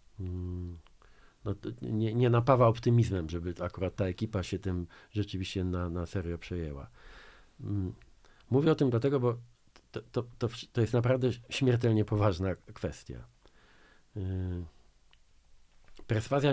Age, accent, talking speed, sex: 50-69, native, 115 wpm, male